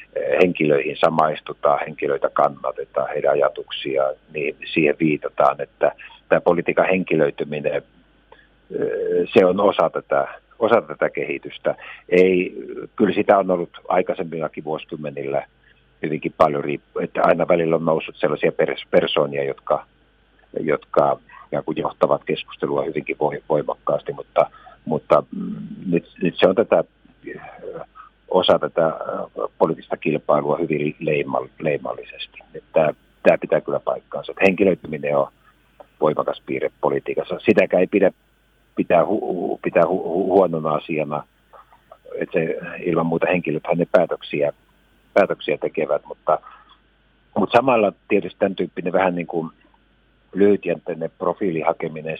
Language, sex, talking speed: Finnish, male, 110 wpm